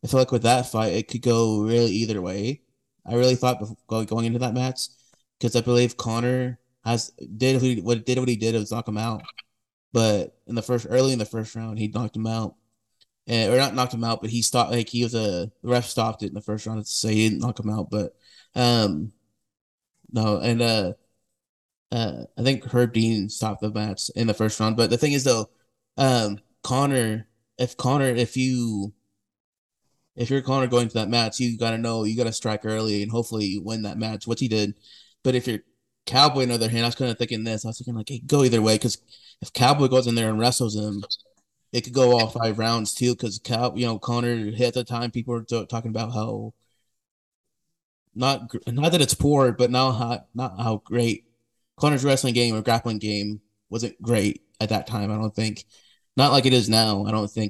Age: 20-39